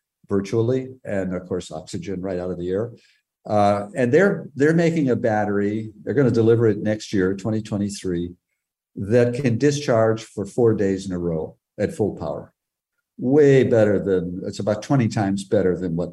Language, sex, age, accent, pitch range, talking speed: English, male, 50-69, American, 95-120 Hz, 175 wpm